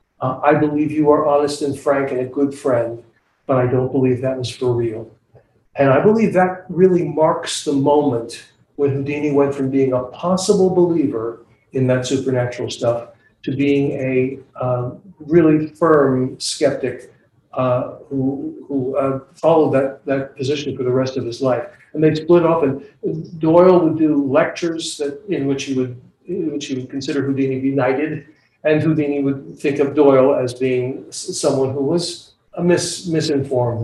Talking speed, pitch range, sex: 170 wpm, 130-155 Hz, male